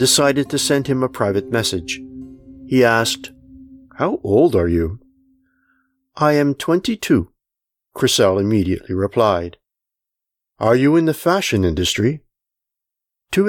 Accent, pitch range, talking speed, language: American, 105-155 Hz, 120 wpm, English